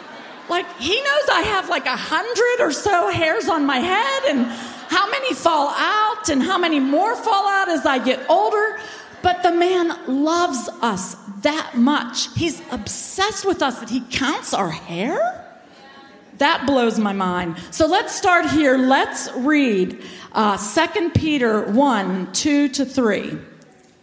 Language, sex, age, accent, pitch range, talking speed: English, female, 40-59, American, 225-315 Hz, 155 wpm